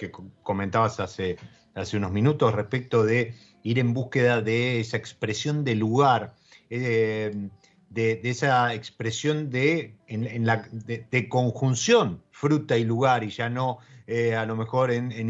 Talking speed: 145 wpm